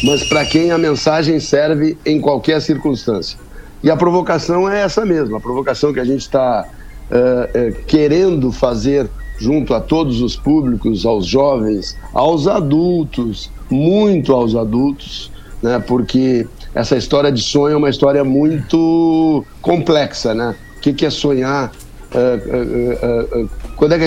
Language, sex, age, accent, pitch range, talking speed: Portuguese, male, 60-79, Brazilian, 125-160 Hz, 160 wpm